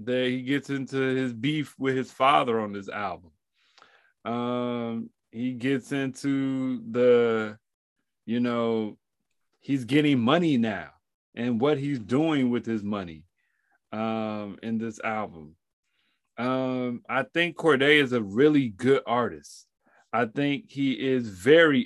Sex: male